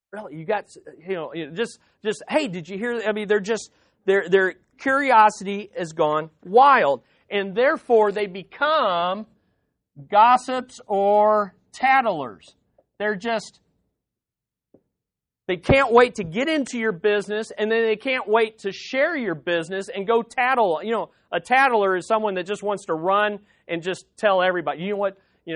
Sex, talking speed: male, 165 wpm